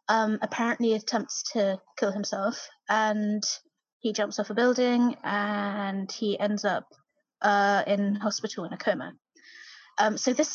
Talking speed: 140 wpm